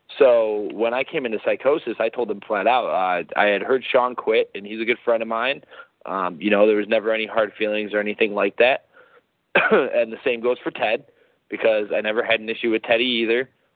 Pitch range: 110-165 Hz